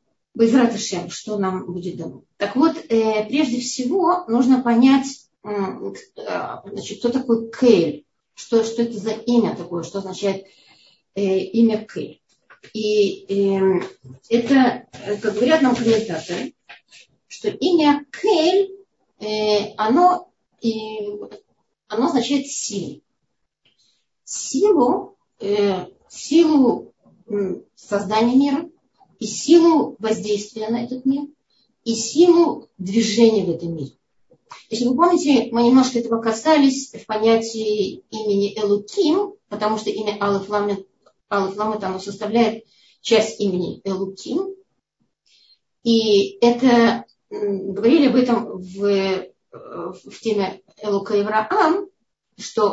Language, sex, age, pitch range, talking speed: Russian, female, 30-49, 200-255 Hz, 95 wpm